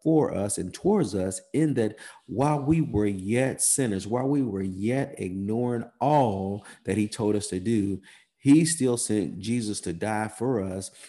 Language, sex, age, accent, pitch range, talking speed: English, male, 40-59, American, 95-115 Hz, 175 wpm